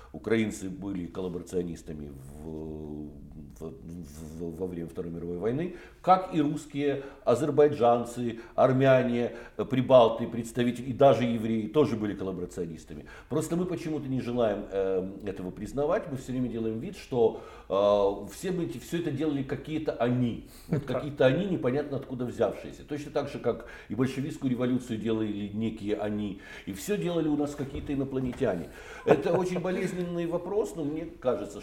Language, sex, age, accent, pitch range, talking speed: Russian, male, 60-79, native, 95-145 Hz, 145 wpm